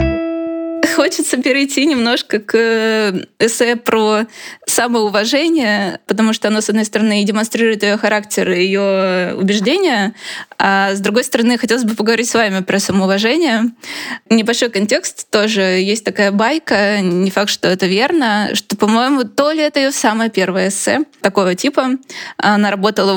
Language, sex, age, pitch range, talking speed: Russian, female, 20-39, 195-230 Hz, 140 wpm